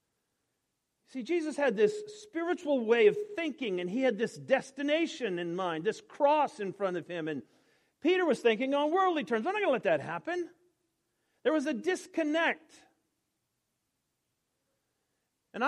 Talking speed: 155 wpm